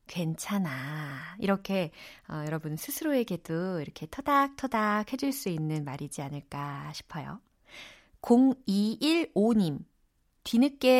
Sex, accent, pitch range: female, native, 170-260 Hz